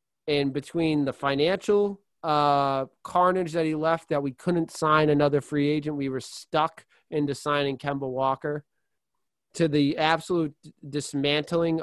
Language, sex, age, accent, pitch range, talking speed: English, male, 30-49, American, 135-170 Hz, 135 wpm